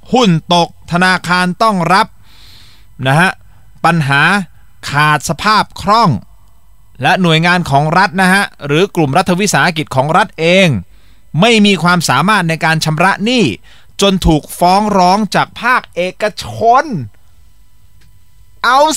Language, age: Thai, 30-49